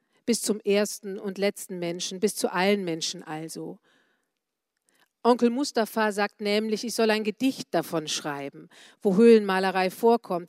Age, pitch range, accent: 40-59, 190-230 Hz, German